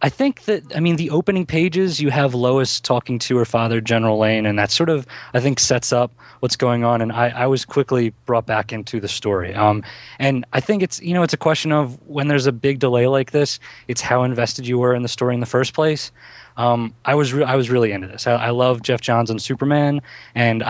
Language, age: English, 20-39